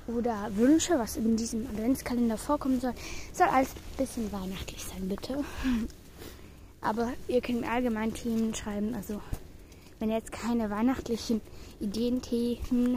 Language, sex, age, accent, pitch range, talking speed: German, female, 10-29, German, 225-280 Hz, 135 wpm